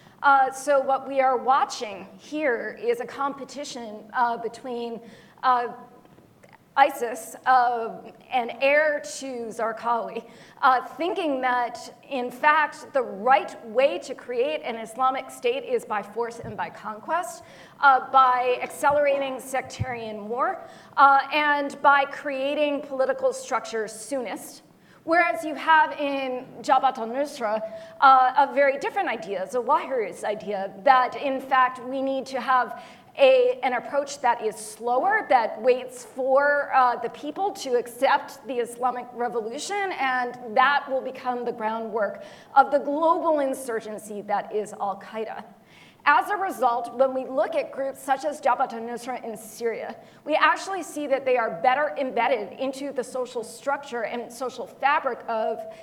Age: 40-59